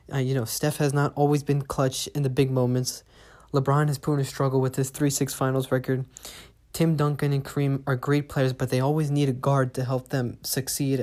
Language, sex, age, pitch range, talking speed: English, male, 20-39, 125-140 Hz, 225 wpm